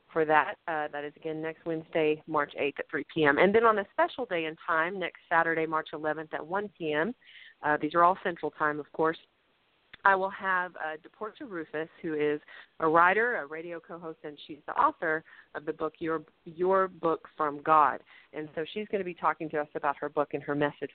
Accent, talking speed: American, 215 wpm